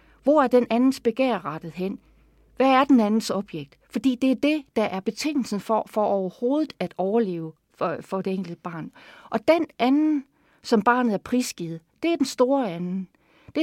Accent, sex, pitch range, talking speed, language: native, female, 190-265 Hz, 185 wpm, Danish